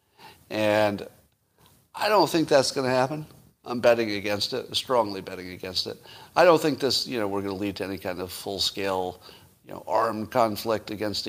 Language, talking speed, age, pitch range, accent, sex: English, 190 wpm, 50-69, 100-130 Hz, American, male